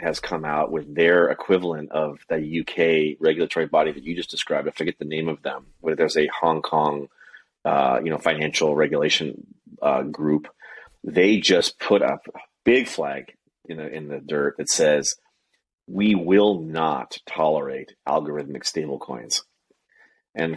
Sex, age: male, 30-49